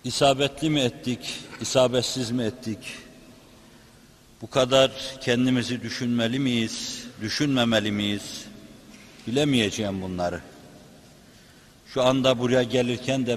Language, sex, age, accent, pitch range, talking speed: Turkish, male, 60-79, native, 120-135 Hz, 90 wpm